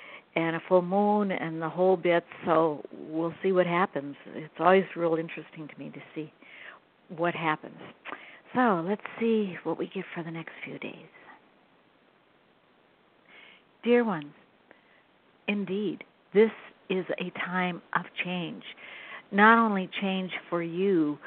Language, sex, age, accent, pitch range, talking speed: English, female, 60-79, American, 170-200 Hz, 135 wpm